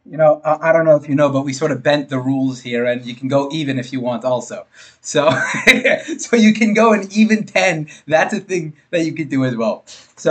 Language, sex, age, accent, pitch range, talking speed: English, male, 20-39, American, 140-220 Hz, 250 wpm